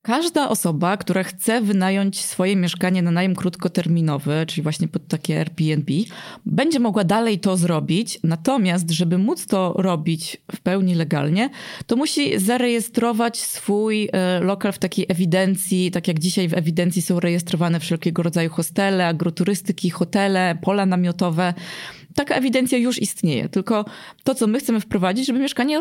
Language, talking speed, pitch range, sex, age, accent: Polish, 145 wpm, 175-215 Hz, female, 20-39, native